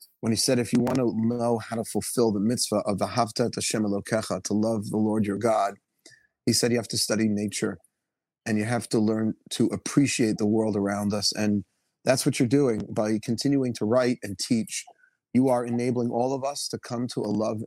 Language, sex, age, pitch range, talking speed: English, male, 30-49, 110-130 Hz, 210 wpm